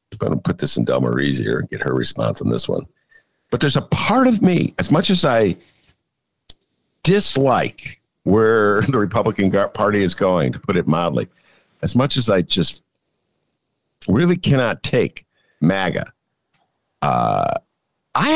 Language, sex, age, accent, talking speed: English, male, 50-69, American, 155 wpm